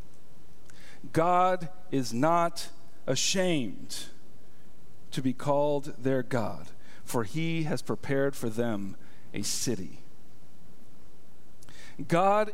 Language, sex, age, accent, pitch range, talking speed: English, male, 50-69, American, 170-245 Hz, 85 wpm